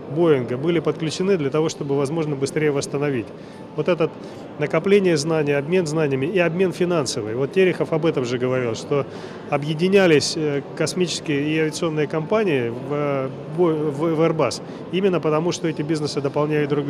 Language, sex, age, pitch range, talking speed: Russian, male, 30-49, 145-170 Hz, 140 wpm